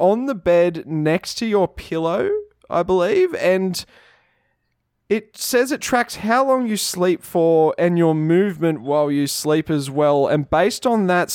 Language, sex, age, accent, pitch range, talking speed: English, male, 20-39, Australian, 155-185 Hz, 165 wpm